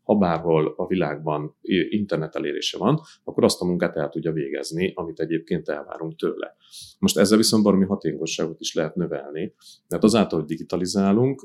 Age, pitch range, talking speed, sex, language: 30-49, 85-110 Hz, 155 wpm, male, Hungarian